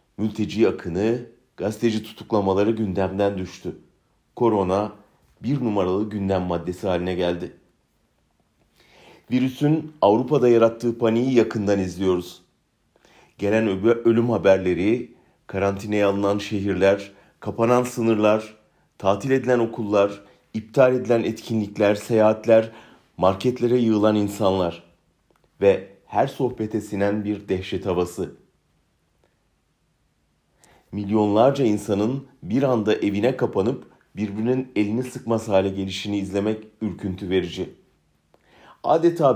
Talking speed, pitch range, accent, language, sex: 90 wpm, 100-115 Hz, Turkish, German, male